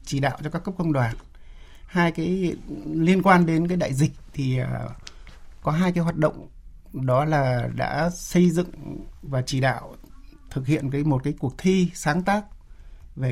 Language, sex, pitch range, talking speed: Vietnamese, male, 130-175 Hz, 175 wpm